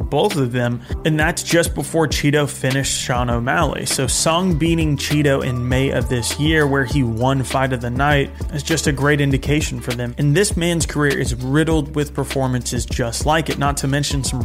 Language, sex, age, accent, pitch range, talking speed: English, male, 30-49, American, 130-160 Hz, 205 wpm